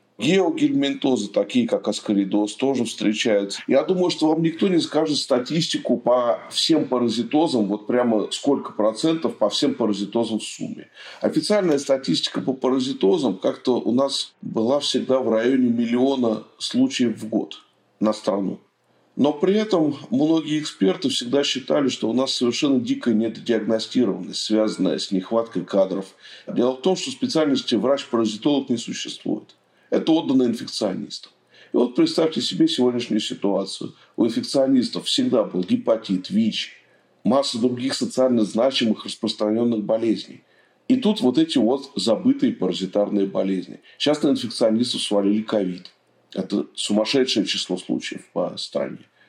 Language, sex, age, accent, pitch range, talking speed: Russian, male, 40-59, native, 110-170 Hz, 130 wpm